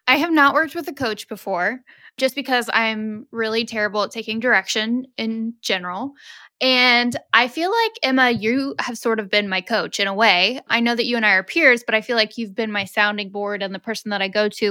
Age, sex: 10-29, female